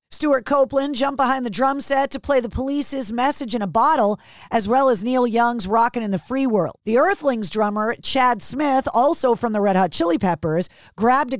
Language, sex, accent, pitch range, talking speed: English, female, American, 215-265 Hz, 205 wpm